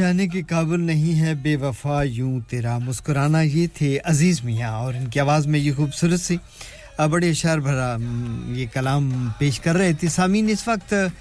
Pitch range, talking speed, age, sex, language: 125-155 Hz, 170 wpm, 50-69, male, English